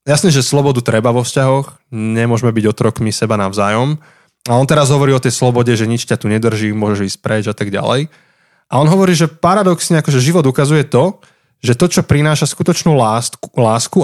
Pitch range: 115-145 Hz